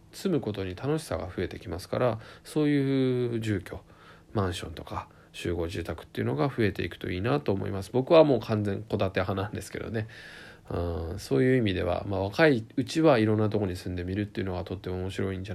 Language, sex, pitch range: Japanese, male, 95-120 Hz